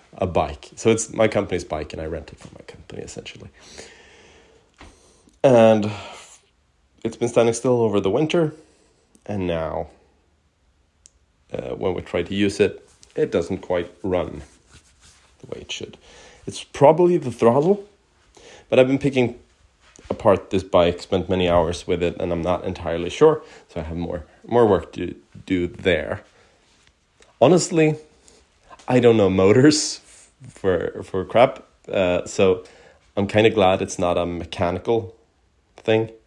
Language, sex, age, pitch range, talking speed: English, male, 30-49, 85-115 Hz, 145 wpm